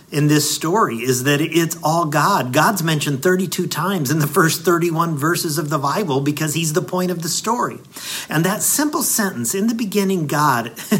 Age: 50-69